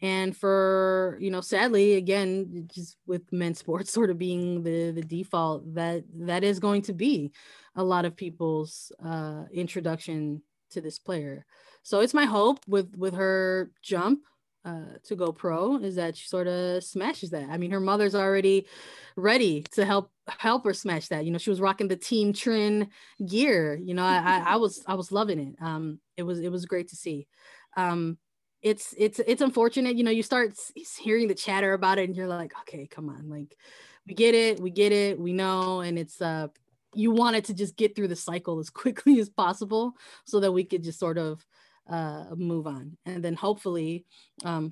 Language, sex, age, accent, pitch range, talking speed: English, female, 20-39, American, 170-205 Hz, 195 wpm